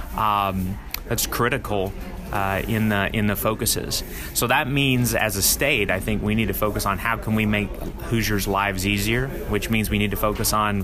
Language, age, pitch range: English, 30-49, 100-115 Hz